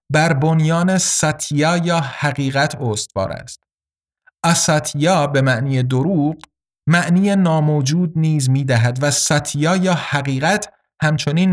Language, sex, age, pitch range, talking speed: Persian, male, 50-69, 130-170 Hz, 105 wpm